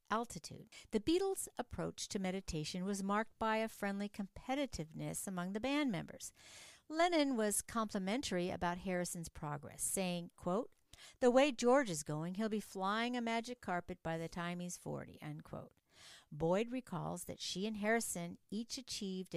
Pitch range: 175-230 Hz